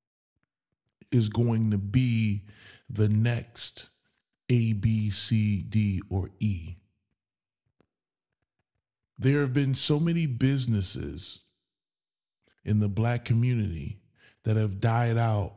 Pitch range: 110-130 Hz